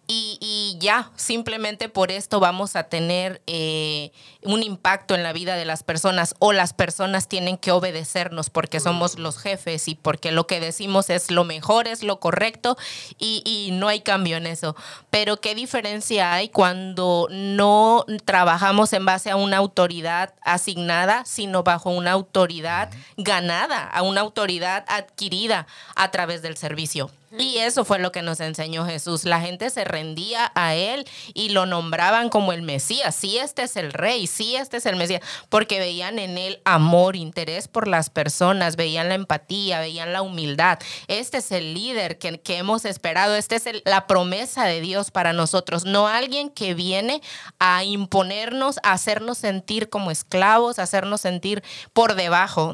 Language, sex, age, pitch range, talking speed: English, female, 30-49, 170-210 Hz, 175 wpm